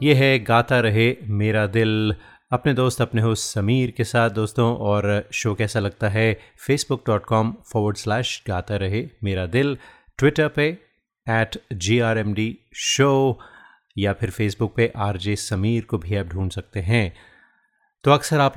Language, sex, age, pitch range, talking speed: Hindi, male, 30-49, 105-120 Hz, 150 wpm